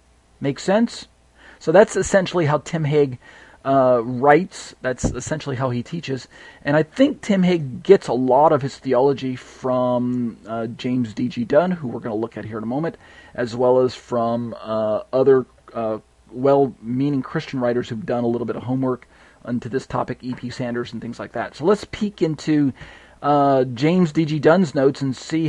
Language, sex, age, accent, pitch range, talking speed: English, male, 40-59, American, 125-160 Hz, 185 wpm